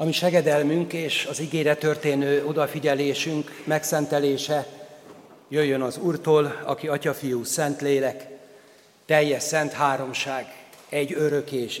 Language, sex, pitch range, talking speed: Hungarian, male, 145-170 Hz, 105 wpm